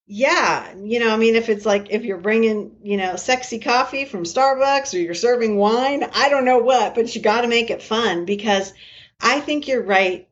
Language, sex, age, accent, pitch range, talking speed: English, female, 50-69, American, 180-230 Hz, 215 wpm